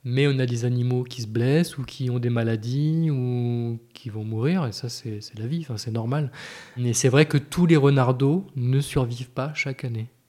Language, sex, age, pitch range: French, male, 20-39, 115-135 Hz